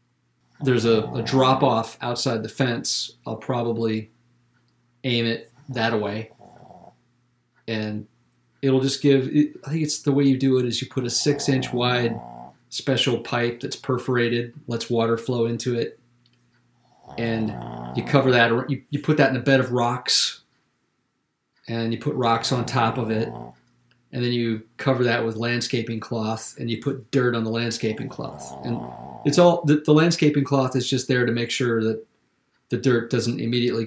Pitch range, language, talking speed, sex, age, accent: 115-130 Hz, English, 165 wpm, male, 40-59, American